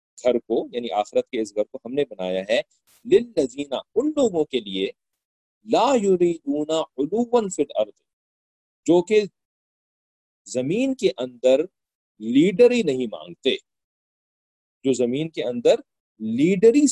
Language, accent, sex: English, Indian, male